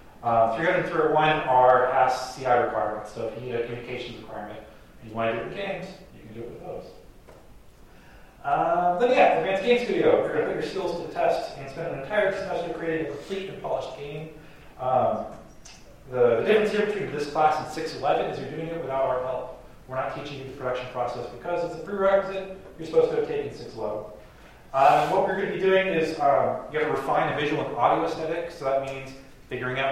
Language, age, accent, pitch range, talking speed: English, 30-49, American, 120-165 Hz, 220 wpm